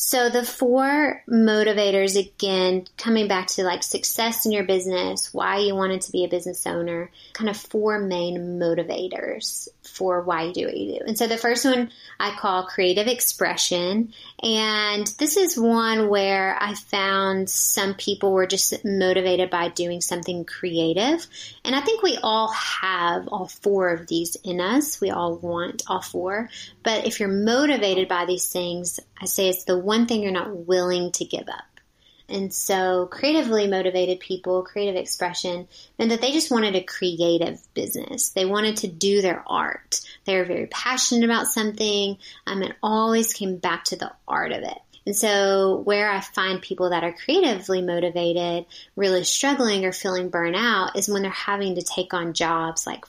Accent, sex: American, female